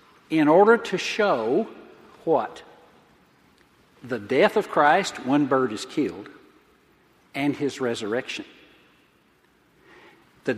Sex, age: male, 60-79